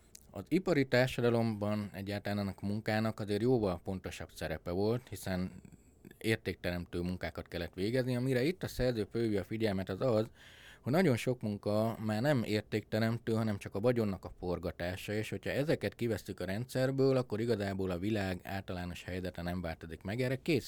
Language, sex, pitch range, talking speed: Hungarian, male, 90-115 Hz, 155 wpm